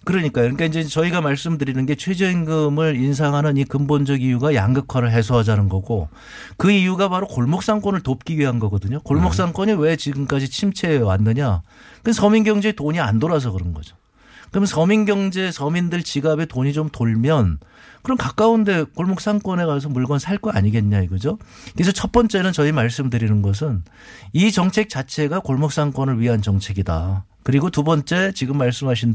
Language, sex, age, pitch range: Korean, male, 50-69, 120-165 Hz